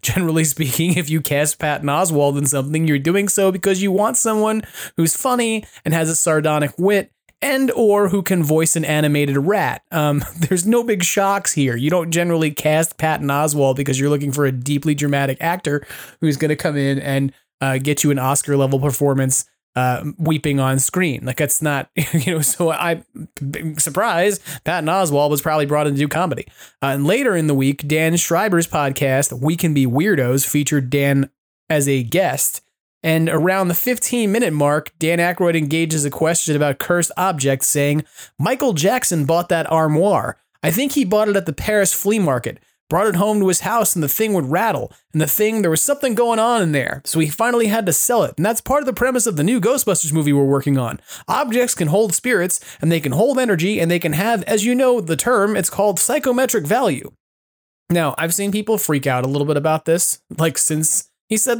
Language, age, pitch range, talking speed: English, 30-49, 145-195 Hz, 205 wpm